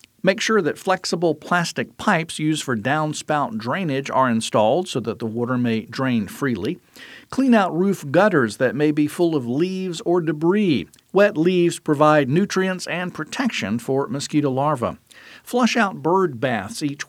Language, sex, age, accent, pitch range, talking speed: English, male, 50-69, American, 130-175 Hz, 160 wpm